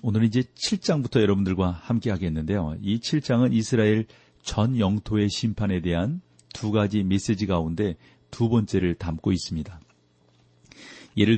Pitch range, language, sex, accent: 90-120 Hz, Korean, male, native